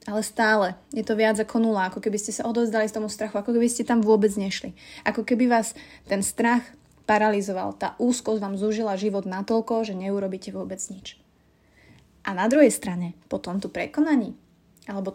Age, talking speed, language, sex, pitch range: 20-39, 180 wpm, Slovak, female, 195-230 Hz